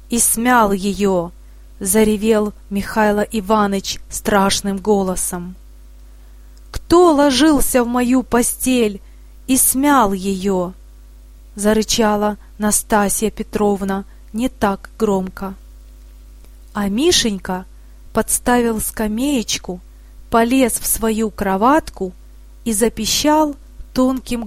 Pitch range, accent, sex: 185-255 Hz, native, female